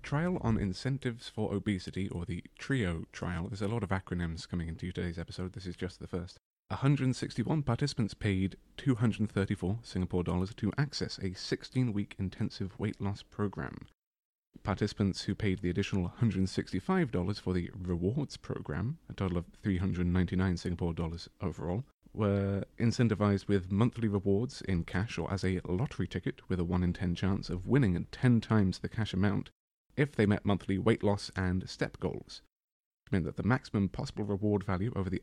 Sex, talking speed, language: male, 170 wpm, English